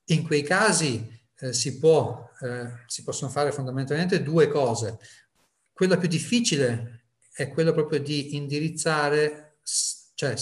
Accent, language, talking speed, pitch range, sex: native, Italian, 125 wpm, 120-150 Hz, male